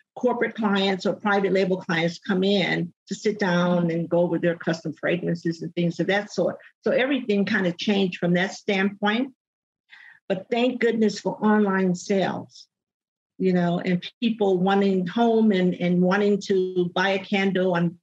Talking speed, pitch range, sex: 165 wpm, 180-215 Hz, female